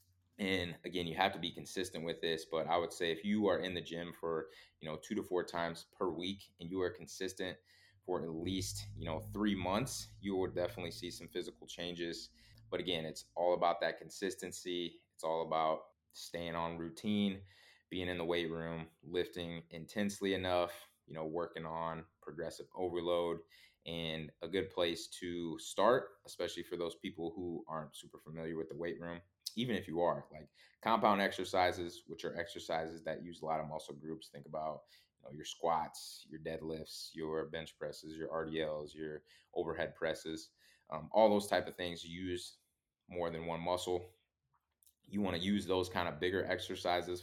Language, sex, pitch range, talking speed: English, male, 80-95 Hz, 180 wpm